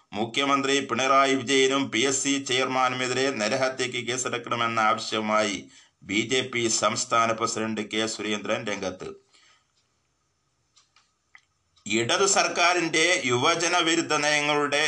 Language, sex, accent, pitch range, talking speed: Malayalam, male, native, 120-145 Hz, 85 wpm